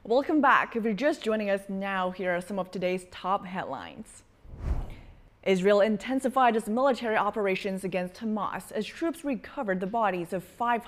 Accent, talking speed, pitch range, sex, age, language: American, 160 wpm, 185-255 Hz, female, 20-39, English